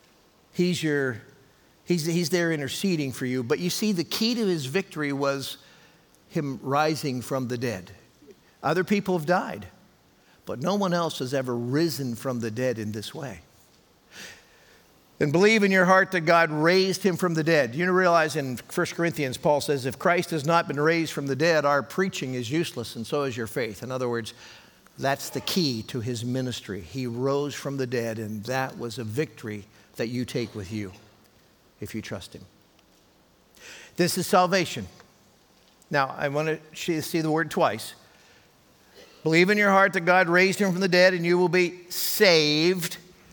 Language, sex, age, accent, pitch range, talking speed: English, male, 50-69, American, 130-180 Hz, 185 wpm